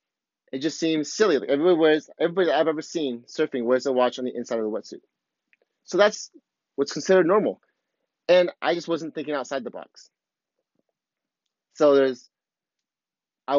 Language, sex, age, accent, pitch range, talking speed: English, male, 30-49, American, 130-180 Hz, 165 wpm